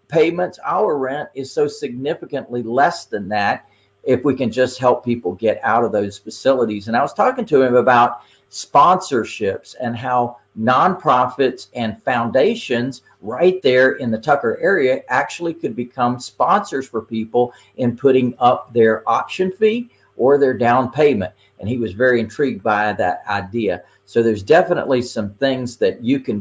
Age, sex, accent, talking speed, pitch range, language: 50-69, male, American, 160 wpm, 110-135 Hz, English